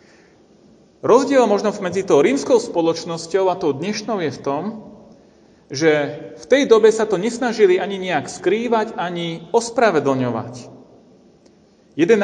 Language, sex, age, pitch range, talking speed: Slovak, male, 40-59, 180-225 Hz, 125 wpm